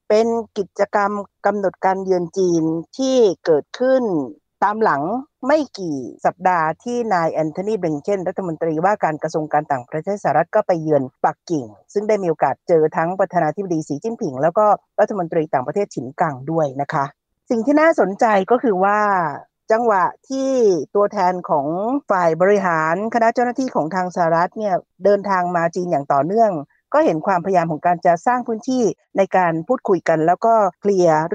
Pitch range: 170-225 Hz